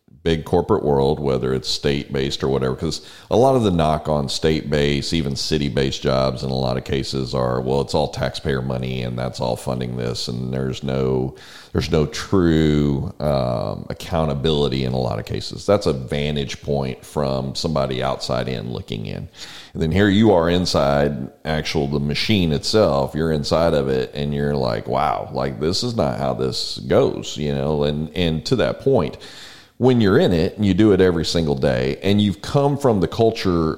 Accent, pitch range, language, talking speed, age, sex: American, 65-85 Hz, English, 195 wpm, 40-59, male